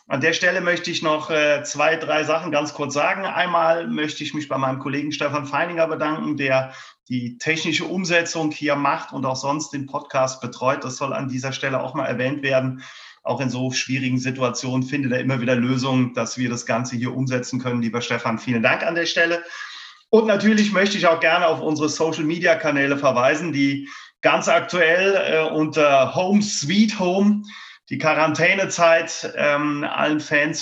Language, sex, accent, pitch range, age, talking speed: German, male, German, 130-160 Hz, 30-49, 175 wpm